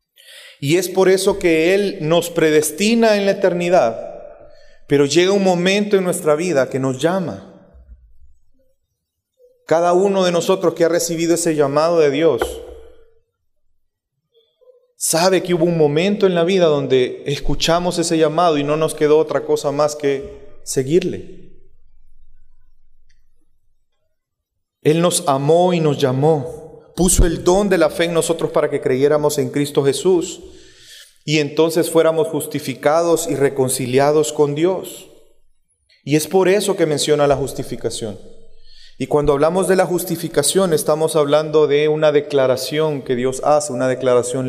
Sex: male